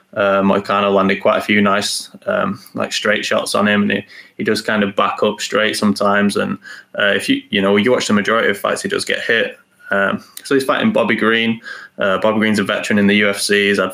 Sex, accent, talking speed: male, British, 250 wpm